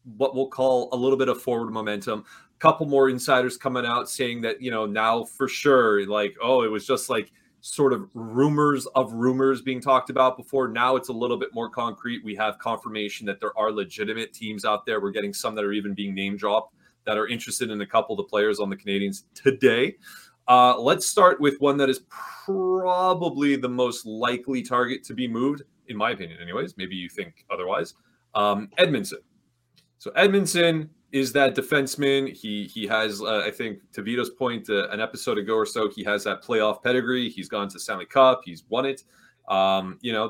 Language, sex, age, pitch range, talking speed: English, male, 30-49, 110-135 Hz, 205 wpm